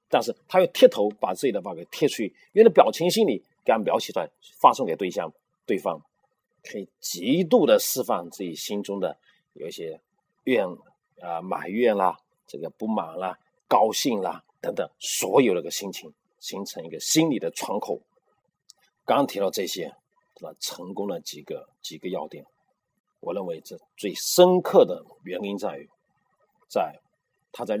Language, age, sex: Chinese, 40-59, male